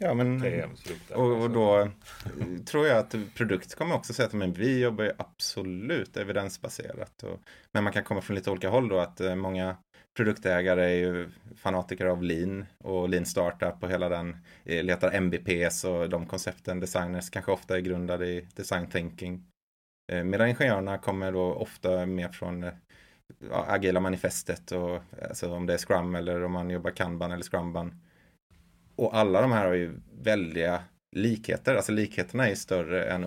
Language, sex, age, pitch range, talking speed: Swedish, male, 30-49, 90-110 Hz, 160 wpm